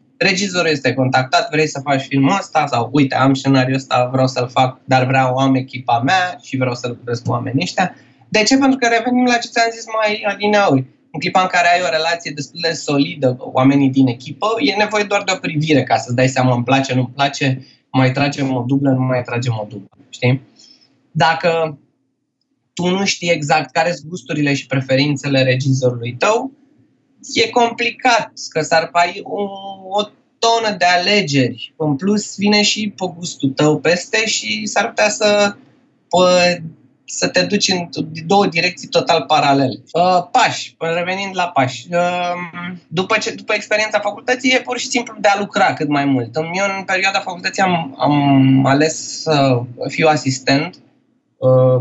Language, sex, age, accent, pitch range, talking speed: Romanian, male, 20-39, native, 135-200 Hz, 175 wpm